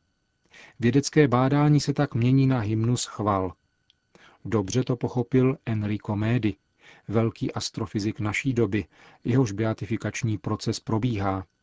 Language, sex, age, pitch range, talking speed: Czech, male, 40-59, 110-125 Hz, 110 wpm